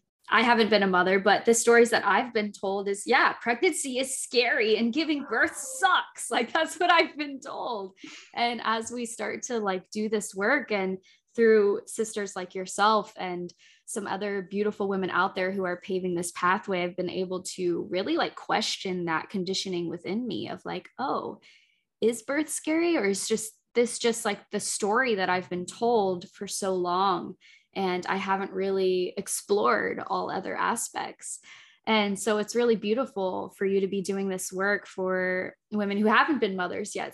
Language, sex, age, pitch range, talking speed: English, female, 10-29, 190-225 Hz, 180 wpm